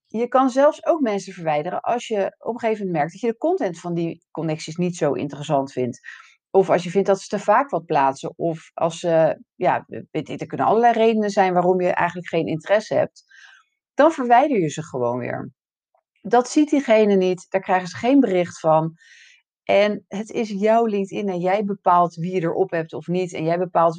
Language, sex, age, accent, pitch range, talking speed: Dutch, female, 40-59, Dutch, 165-225 Hz, 210 wpm